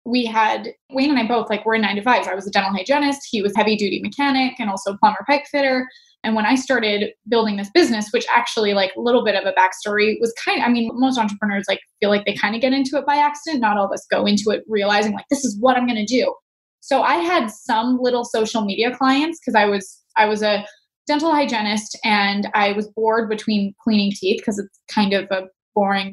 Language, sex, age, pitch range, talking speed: English, female, 20-39, 215-280 Hz, 245 wpm